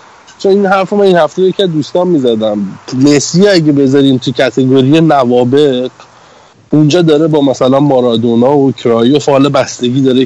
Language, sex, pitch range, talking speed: Persian, male, 125-155 Hz, 160 wpm